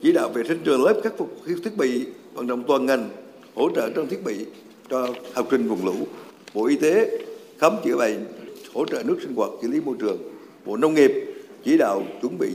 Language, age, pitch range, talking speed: Vietnamese, 60-79, 105-140 Hz, 225 wpm